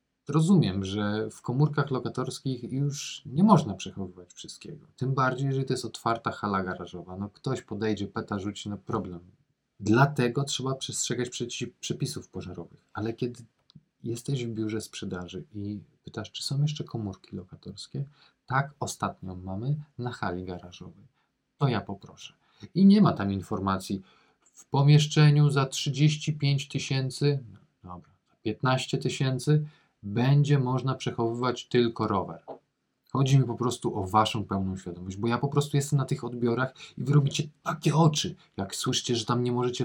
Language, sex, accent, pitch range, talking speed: Polish, male, native, 105-145 Hz, 150 wpm